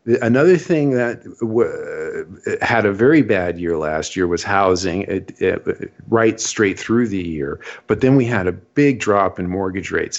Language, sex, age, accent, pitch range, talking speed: English, male, 40-59, American, 90-120 Hz, 160 wpm